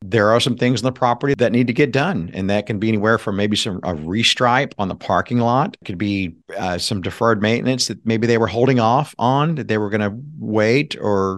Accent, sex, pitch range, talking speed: American, male, 100-125 Hz, 250 wpm